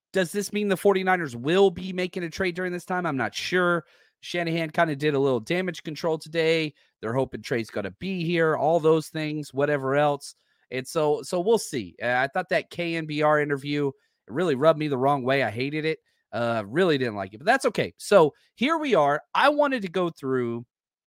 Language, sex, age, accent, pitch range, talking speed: English, male, 30-49, American, 135-185 Hz, 215 wpm